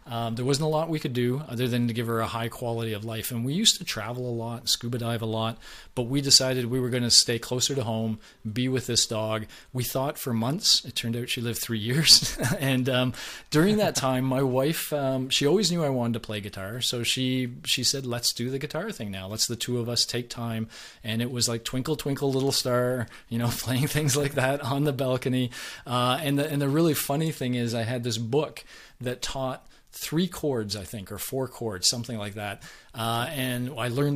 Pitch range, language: 115-140 Hz, English